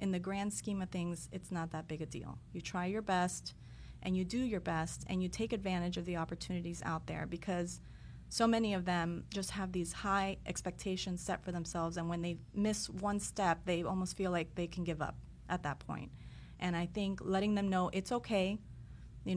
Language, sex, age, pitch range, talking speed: English, female, 30-49, 175-205 Hz, 215 wpm